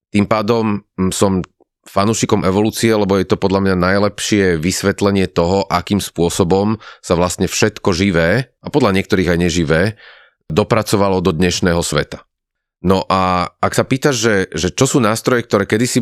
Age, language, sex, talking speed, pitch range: 30-49, Slovak, male, 150 wpm, 95-115 Hz